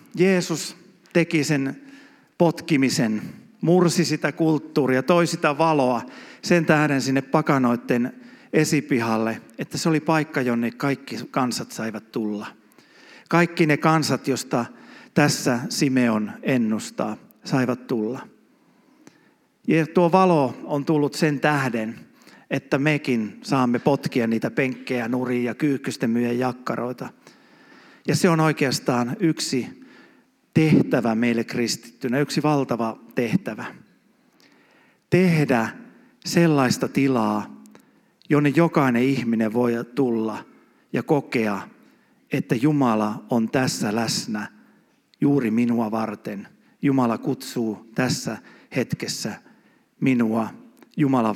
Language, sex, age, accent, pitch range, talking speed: Finnish, male, 50-69, native, 120-160 Hz, 100 wpm